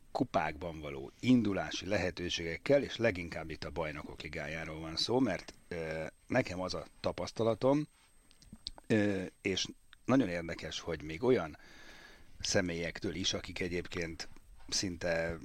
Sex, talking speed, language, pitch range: male, 115 wpm, Hungarian, 80-110 Hz